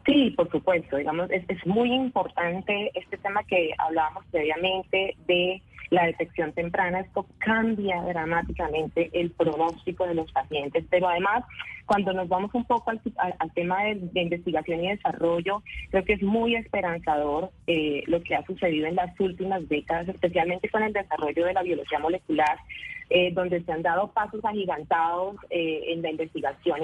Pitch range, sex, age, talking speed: 170-210 Hz, female, 20-39, 160 wpm